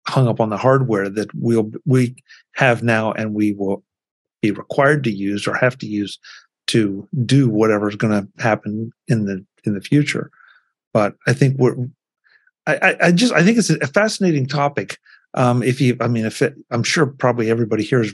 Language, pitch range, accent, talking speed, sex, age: English, 105-130 Hz, American, 190 wpm, male, 50-69